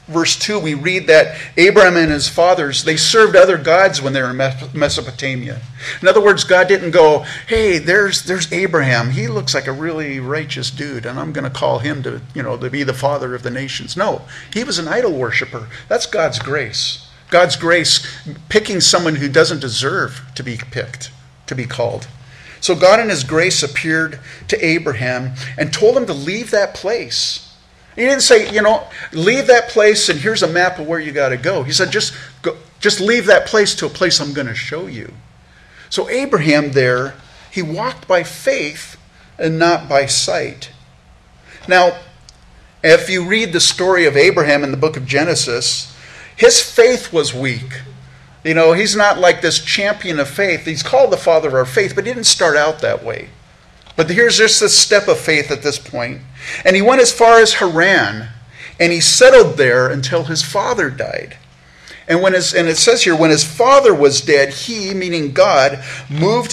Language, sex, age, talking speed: English, male, 50-69, 190 wpm